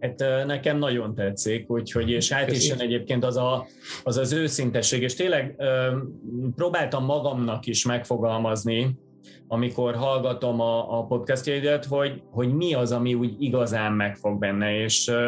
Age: 30-49